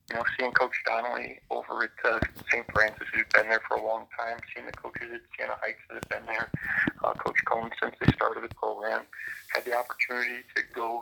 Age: 40-59